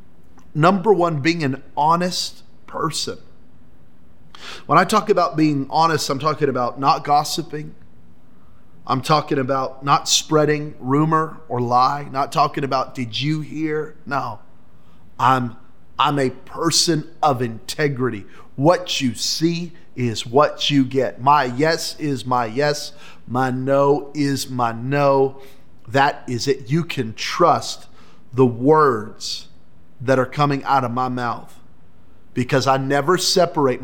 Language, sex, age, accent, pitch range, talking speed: English, male, 30-49, American, 120-155 Hz, 130 wpm